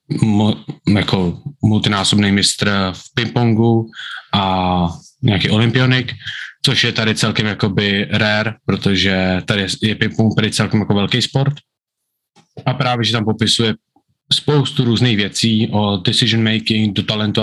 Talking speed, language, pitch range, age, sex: 125 wpm, Czech, 105-120 Hz, 20-39, male